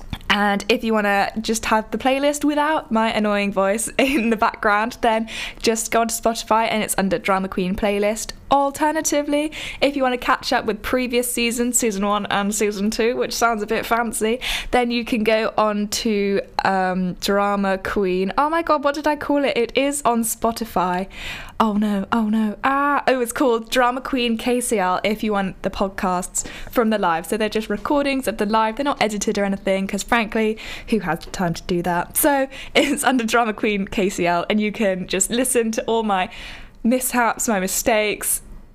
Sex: female